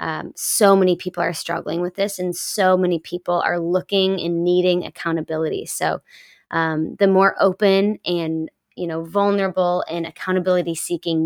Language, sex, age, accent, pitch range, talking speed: English, female, 20-39, American, 170-190 Hz, 155 wpm